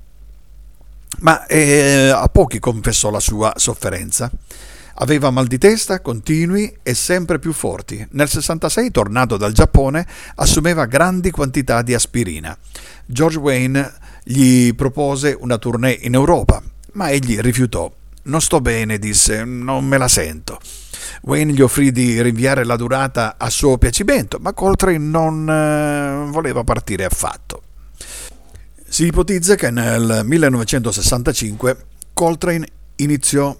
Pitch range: 110-145 Hz